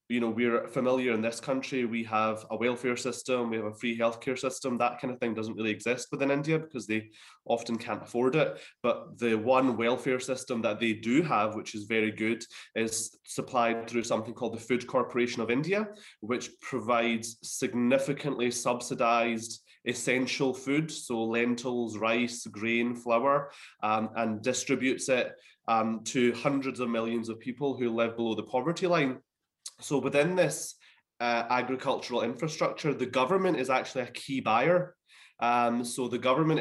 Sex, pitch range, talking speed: male, 115-130 Hz, 165 wpm